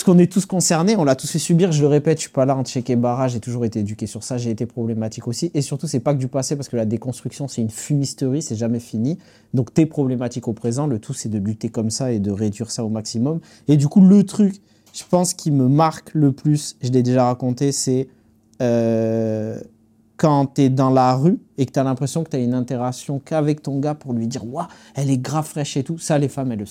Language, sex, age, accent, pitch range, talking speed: French, male, 30-49, French, 115-145 Hz, 270 wpm